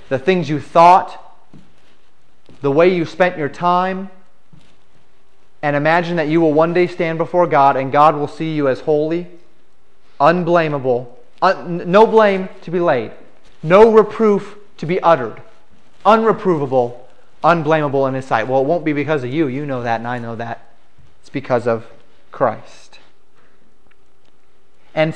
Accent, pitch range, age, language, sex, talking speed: American, 145-180 Hz, 30-49, English, male, 150 wpm